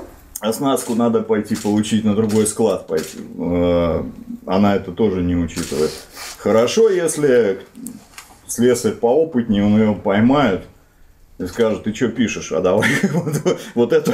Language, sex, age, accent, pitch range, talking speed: Russian, male, 30-49, native, 95-140 Hz, 125 wpm